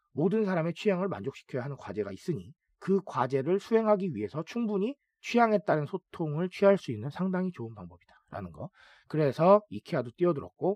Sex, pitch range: male, 125-195 Hz